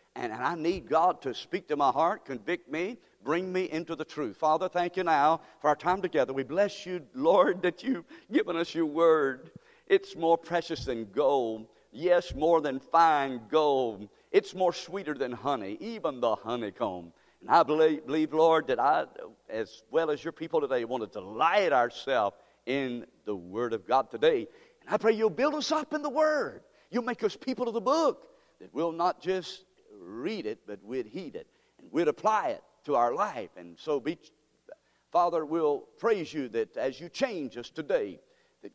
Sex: male